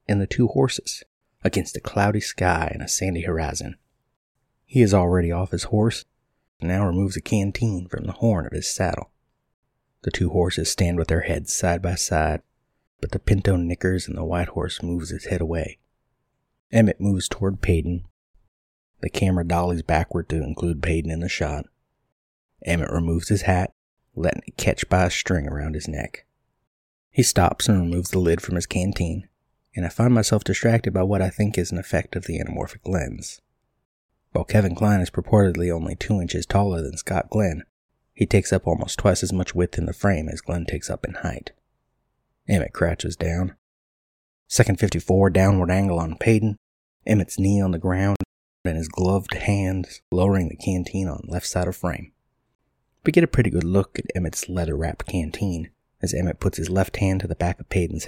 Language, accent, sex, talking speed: English, American, male, 185 wpm